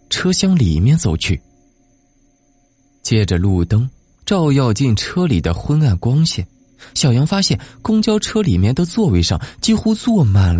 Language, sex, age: Chinese, male, 20-39